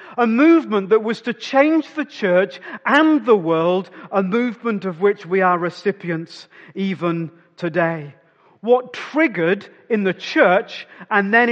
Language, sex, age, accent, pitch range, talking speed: English, male, 40-59, British, 175-245 Hz, 140 wpm